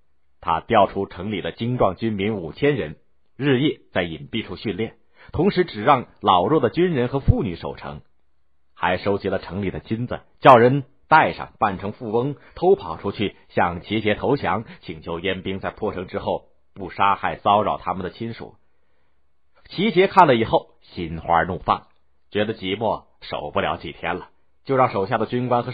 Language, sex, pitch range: Chinese, male, 80-130 Hz